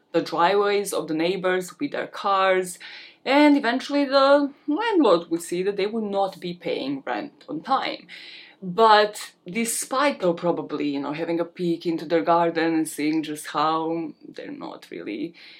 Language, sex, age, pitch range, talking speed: English, female, 20-39, 165-260 Hz, 160 wpm